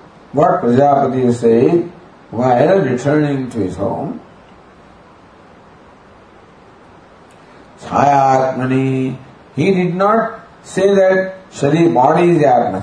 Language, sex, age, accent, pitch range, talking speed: English, male, 50-69, Indian, 130-170 Hz, 85 wpm